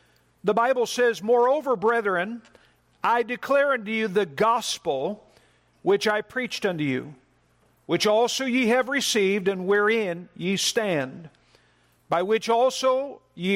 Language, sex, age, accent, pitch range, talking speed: English, male, 50-69, American, 170-225 Hz, 130 wpm